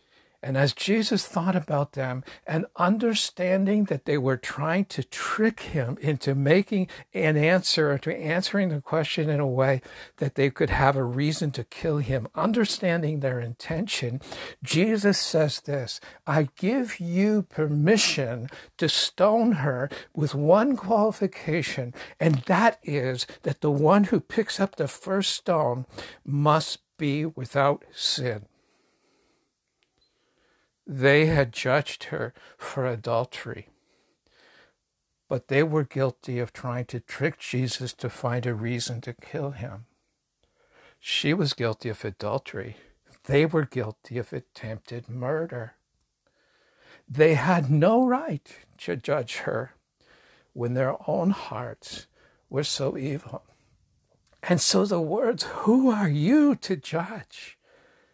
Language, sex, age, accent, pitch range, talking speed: English, male, 60-79, American, 130-180 Hz, 125 wpm